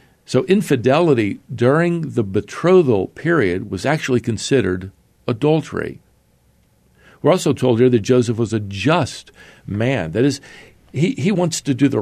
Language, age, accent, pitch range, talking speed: English, 50-69, American, 105-150 Hz, 140 wpm